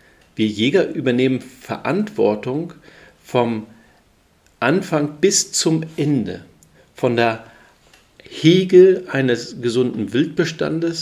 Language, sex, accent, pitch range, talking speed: German, male, German, 105-130 Hz, 80 wpm